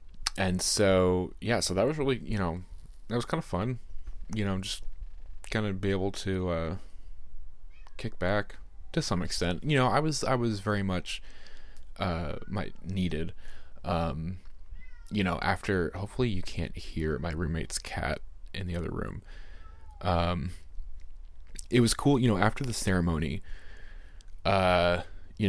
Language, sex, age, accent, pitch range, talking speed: English, male, 20-39, American, 80-100 Hz, 150 wpm